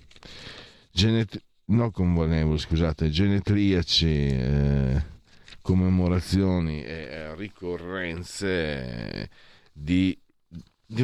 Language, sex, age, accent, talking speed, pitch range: Italian, male, 40-59, native, 55 wpm, 90-125 Hz